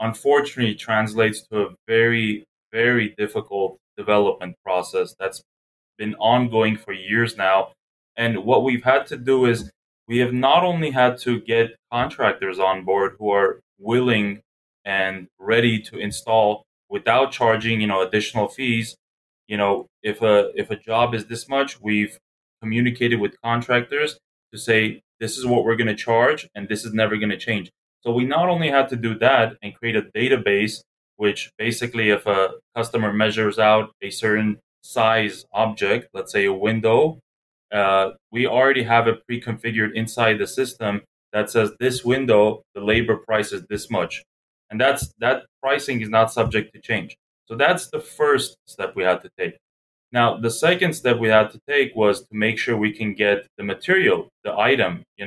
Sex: male